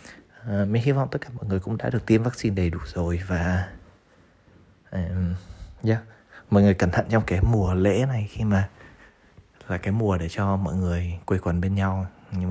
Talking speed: 200 wpm